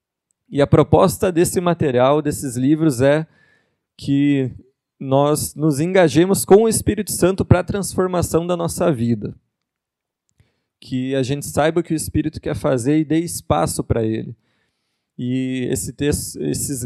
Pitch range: 135-160 Hz